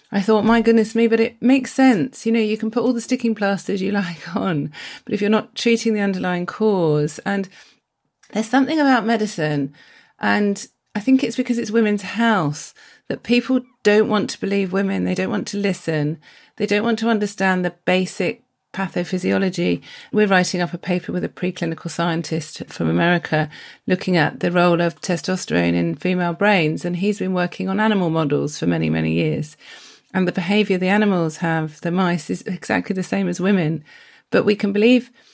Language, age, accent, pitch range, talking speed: English, 40-59, British, 170-220 Hz, 190 wpm